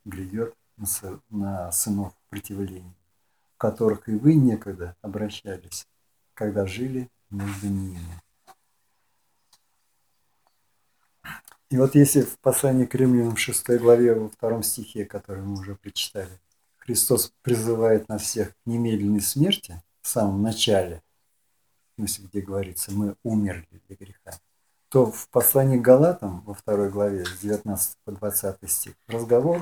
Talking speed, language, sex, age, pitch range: 120 wpm, Russian, male, 50-69, 95-125 Hz